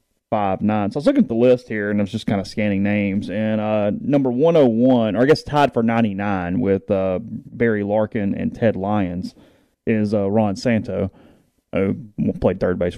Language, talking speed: English, 205 wpm